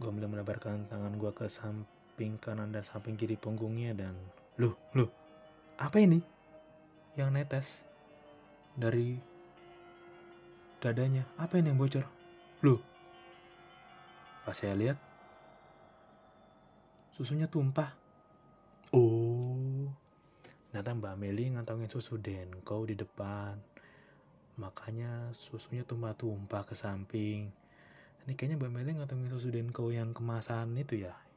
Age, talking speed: 20-39, 105 wpm